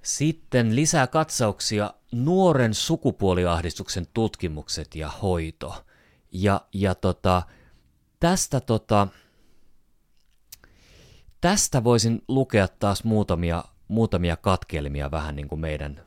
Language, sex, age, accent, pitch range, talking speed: Finnish, male, 30-49, native, 85-115 Hz, 90 wpm